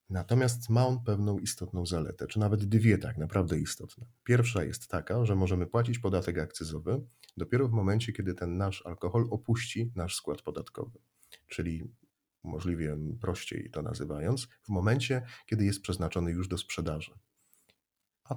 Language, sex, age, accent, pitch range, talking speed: English, male, 40-59, Polish, 85-105 Hz, 145 wpm